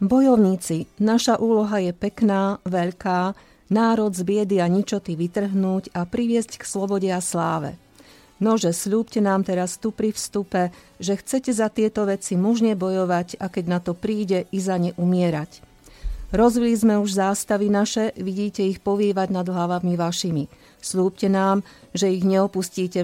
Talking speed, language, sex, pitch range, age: 145 wpm, Slovak, female, 180-205 Hz, 50-69